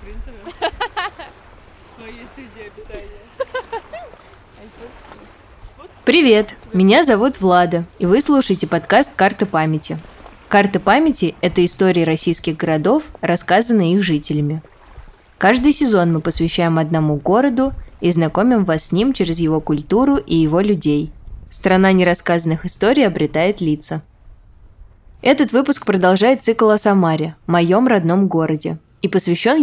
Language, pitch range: Russian, 160-215 Hz